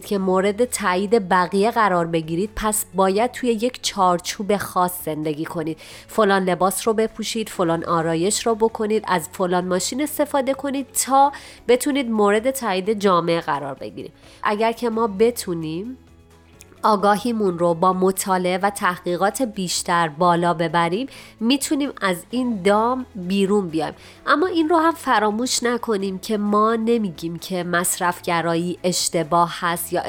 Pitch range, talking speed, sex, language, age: 175-230 Hz, 135 wpm, female, Persian, 30-49